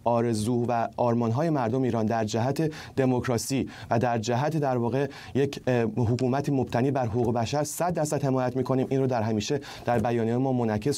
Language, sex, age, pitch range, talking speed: Persian, male, 30-49, 115-145 Hz, 170 wpm